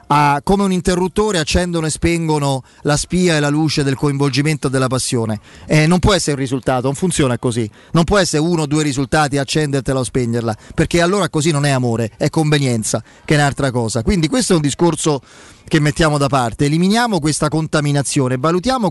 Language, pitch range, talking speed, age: Italian, 140-185 Hz, 190 wpm, 30-49